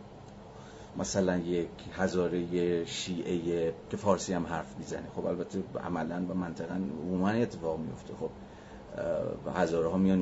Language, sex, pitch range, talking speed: Persian, male, 85-100 Hz, 130 wpm